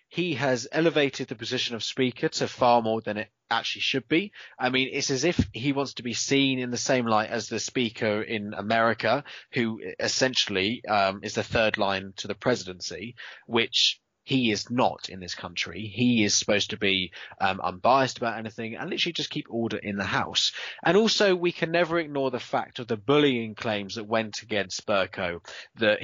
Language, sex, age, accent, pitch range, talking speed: English, male, 20-39, British, 105-130 Hz, 195 wpm